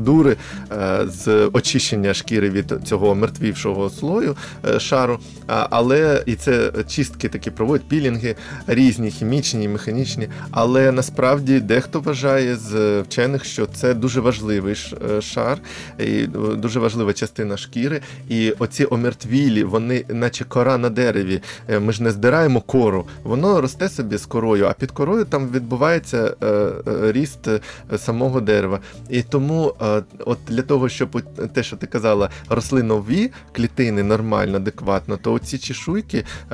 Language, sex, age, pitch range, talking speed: Ukrainian, male, 20-39, 105-130 Hz, 130 wpm